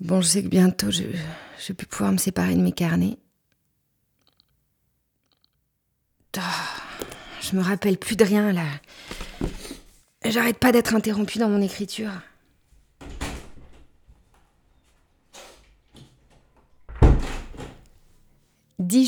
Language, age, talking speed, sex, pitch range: French, 30-49, 90 wpm, female, 185-235 Hz